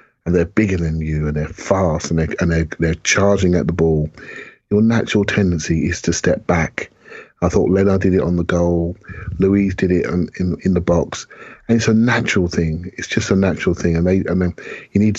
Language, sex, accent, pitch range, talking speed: English, male, British, 80-100 Hz, 220 wpm